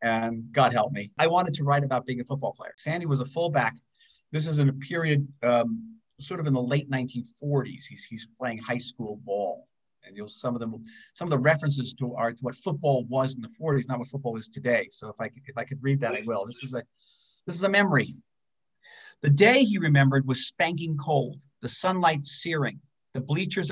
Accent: American